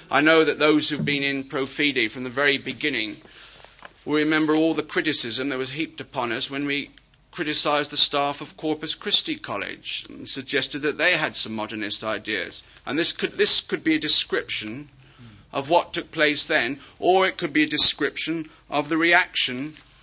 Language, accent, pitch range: English, British, 135-160 Hz